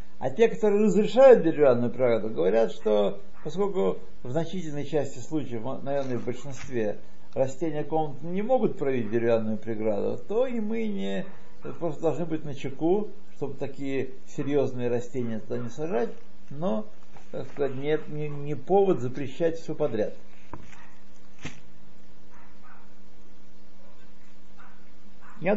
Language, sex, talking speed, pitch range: Russian, male, 115 wpm, 100-155 Hz